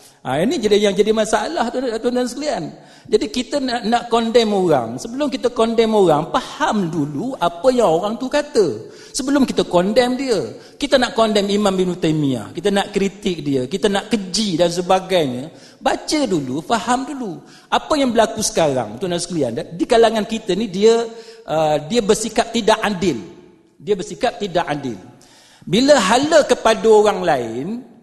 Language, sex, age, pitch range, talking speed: Malay, male, 50-69, 180-245 Hz, 165 wpm